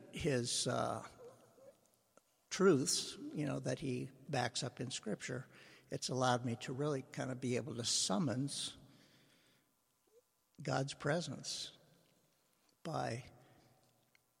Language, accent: English, American